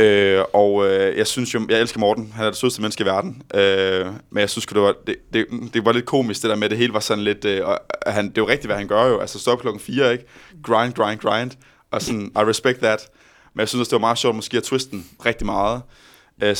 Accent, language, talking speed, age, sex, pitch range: native, Danish, 270 wpm, 20-39, male, 100-115 Hz